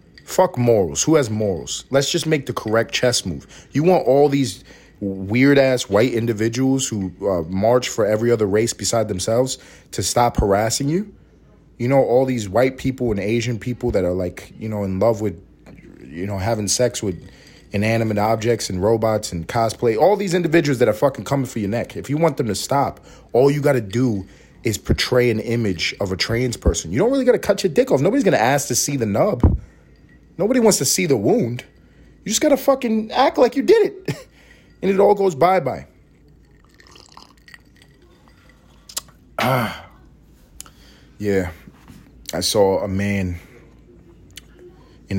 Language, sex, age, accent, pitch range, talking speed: English, male, 30-49, American, 95-135 Hz, 180 wpm